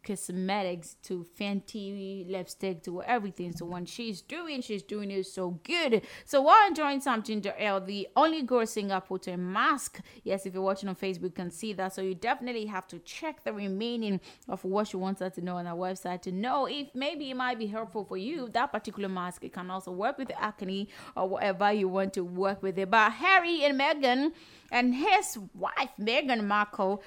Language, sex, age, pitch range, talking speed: English, female, 20-39, 190-240 Hz, 200 wpm